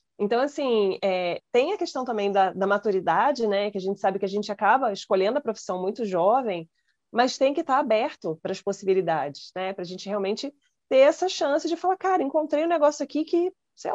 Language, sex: Portuguese, female